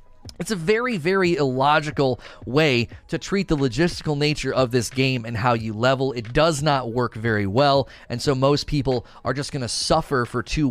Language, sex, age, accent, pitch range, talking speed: English, male, 30-49, American, 125-170 Hz, 195 wpm